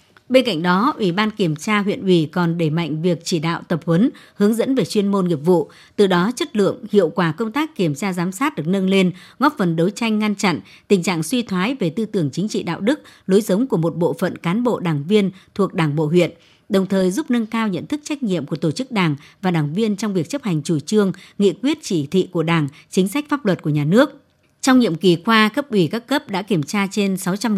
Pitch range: 170-220 Hz